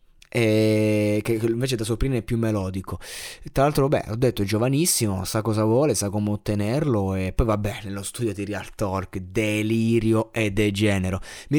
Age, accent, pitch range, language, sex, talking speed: 20-39, native, 110-140 Hz, Italian, male, 170 wpm